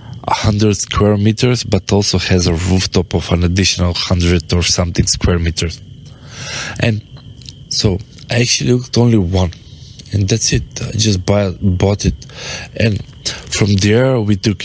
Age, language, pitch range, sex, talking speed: 20-39, English, 95-115 Hz, male, 150 wpm